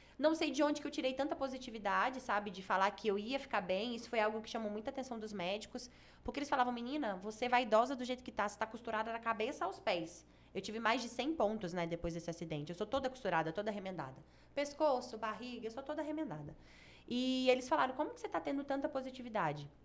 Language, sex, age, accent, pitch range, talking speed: Portuguese, female, 10-29, Brazilian, 205-265 Hz, 230 wpm